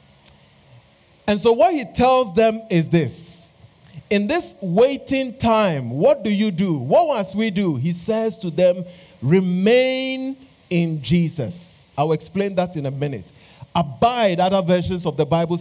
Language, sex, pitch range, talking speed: English, male, 160-225 Hz, 155 wpm